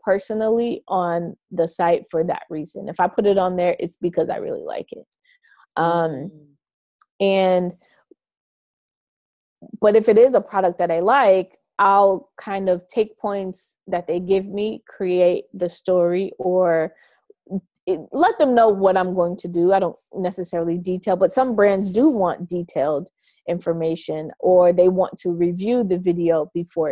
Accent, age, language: American, 20-39, English